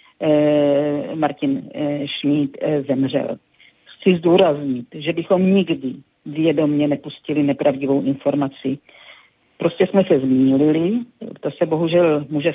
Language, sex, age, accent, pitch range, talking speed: Czech, female, 50-69, native, 145-180 Hz, 110 wpm